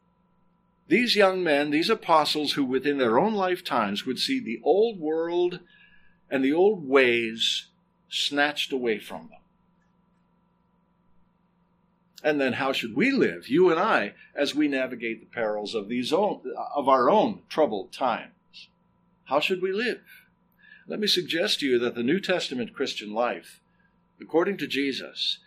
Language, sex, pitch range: English, male, 145-195 Hz